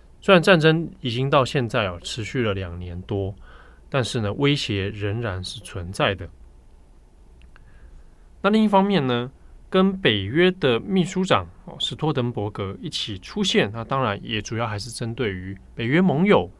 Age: 20-39